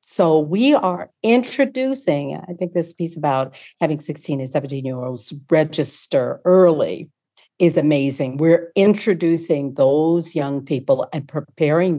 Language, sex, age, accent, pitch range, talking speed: English, female, 50-69, American, 155-220 Hz, 130 wpm